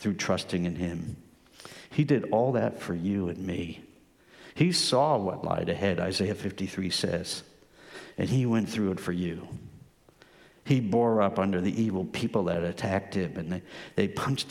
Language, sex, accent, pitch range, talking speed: English, male, American, 90-115 Hz, 170 wpm